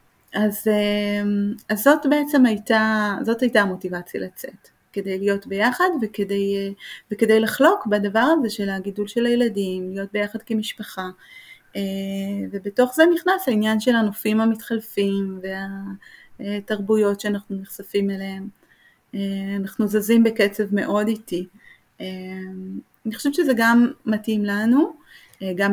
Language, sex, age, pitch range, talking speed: Hebrew, female, 30-49, 195-225 Hz, 110 wpm